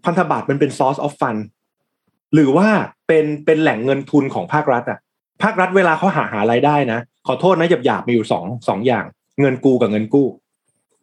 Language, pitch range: Thai, 125-160 Hz